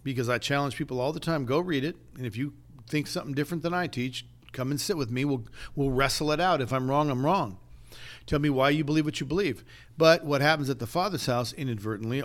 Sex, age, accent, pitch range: male, 50-69, American, 120-150 Hz